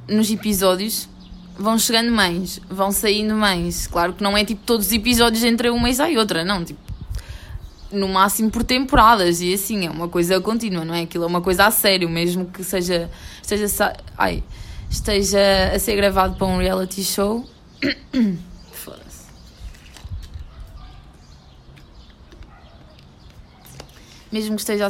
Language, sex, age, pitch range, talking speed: English, female, 20-39, 170-205 Hz, 140 wpm